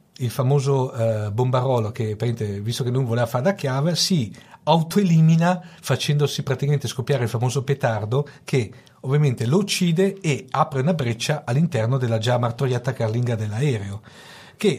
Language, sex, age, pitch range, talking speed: Italian, male, 40-59, 115-145 Hz, 150 wpm